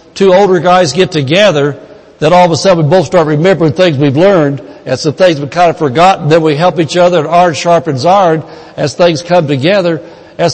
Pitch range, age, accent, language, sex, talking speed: 150-190 Hz, 60-79, American, English, male, 215 wpm